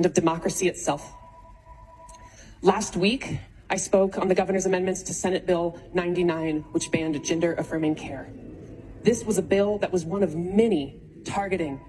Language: English